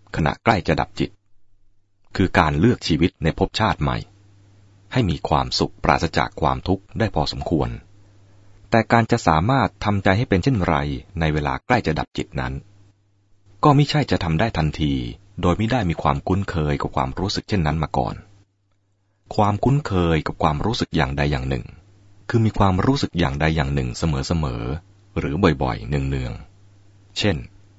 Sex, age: male, 30-49